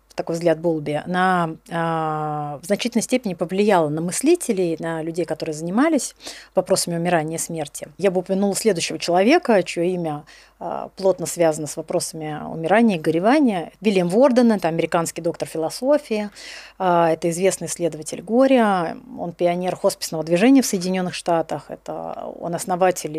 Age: 30-49